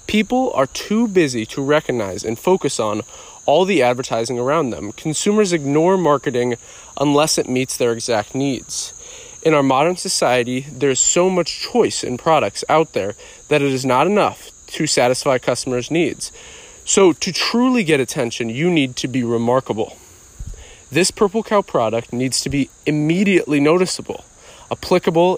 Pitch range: 125-170 Hz